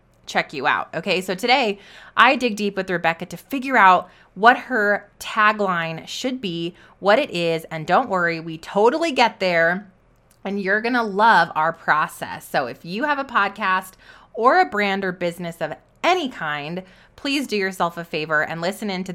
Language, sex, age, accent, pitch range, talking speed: English, female, 20-39, American, 180-230 Hz, 180 wpm